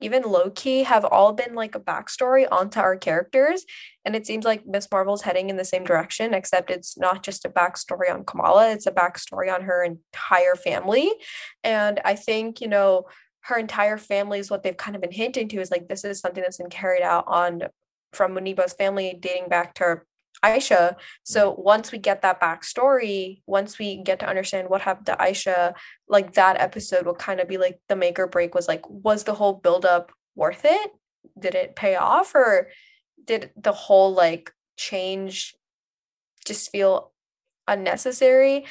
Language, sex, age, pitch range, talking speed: English, female, 10-29, 185-250 Hz, 185 wpm